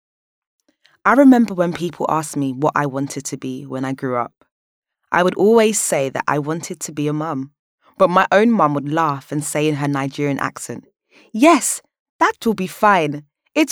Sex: female